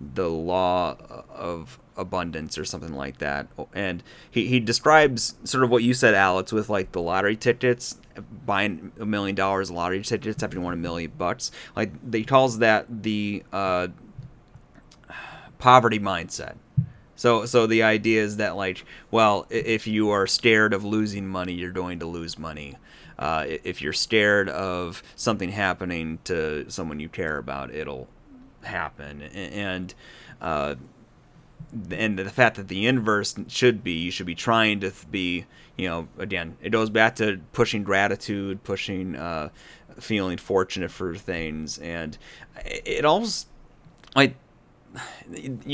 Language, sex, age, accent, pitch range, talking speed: English, male, 30-49, American, 90-120 Hz, 145 wpm